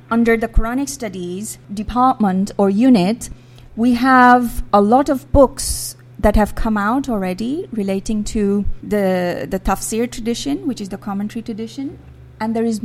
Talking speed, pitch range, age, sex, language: 150 wpm, 185-245 Hz, 30-49, female, English